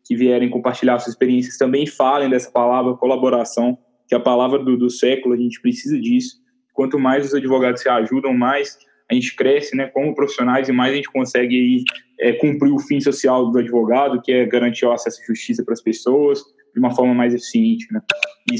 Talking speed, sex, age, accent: 205 wpm, male, 10-29, Brazilian